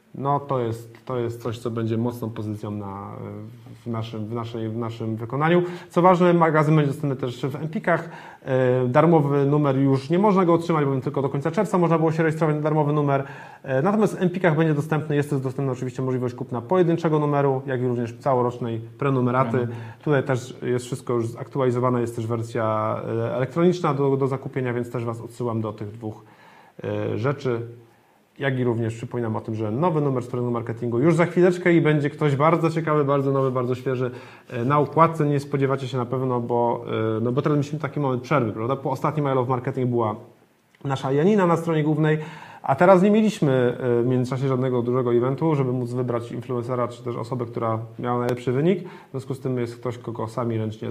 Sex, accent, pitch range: male, native, 120-150 Hz